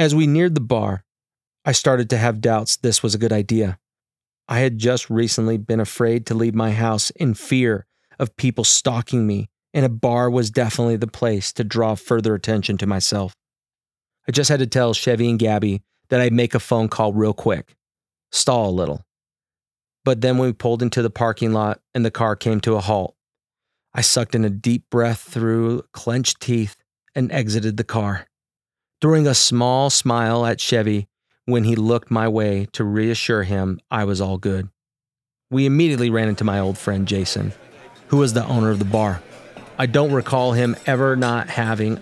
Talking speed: 185 wpm